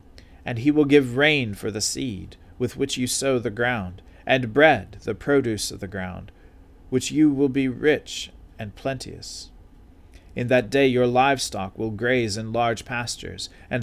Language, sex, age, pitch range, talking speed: English, male, 40-59, 95-130 Hz, 170 wpm